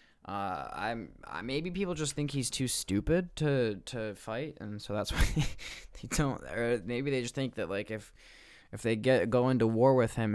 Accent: American